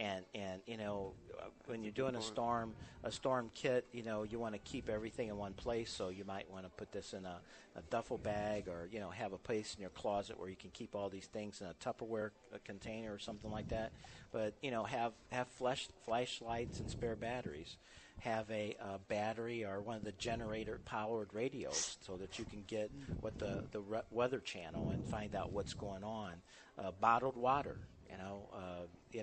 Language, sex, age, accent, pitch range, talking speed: English, male, 50-69, American, 100-115 Hz, 215 wpm